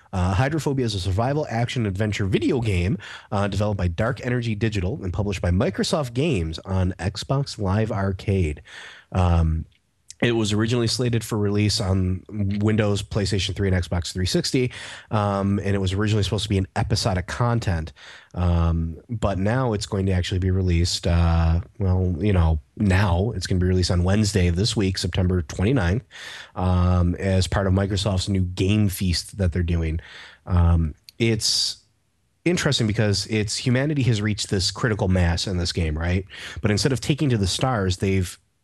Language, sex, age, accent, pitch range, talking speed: English, male, 30-49, American, 90-115 Hz, 170 wpm